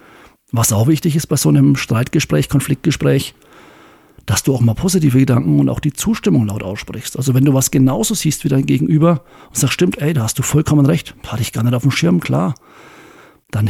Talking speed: 210 wpm